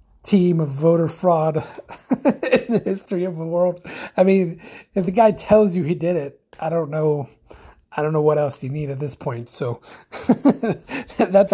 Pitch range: 145-180 Hz